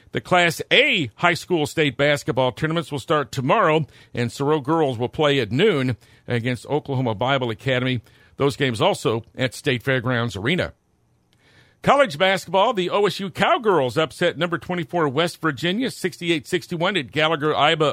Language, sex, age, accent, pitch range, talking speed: English, male, 50-69, American, 125-175 Hz, 140 wpm